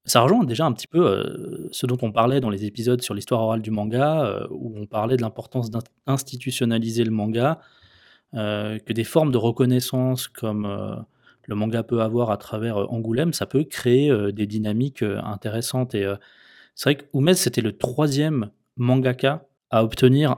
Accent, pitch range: French, 110-140 Hz